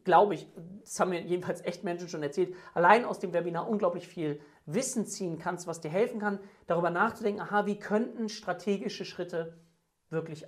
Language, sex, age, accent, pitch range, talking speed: German, male, 40-59, German, 180-220 Hz, 180 wpm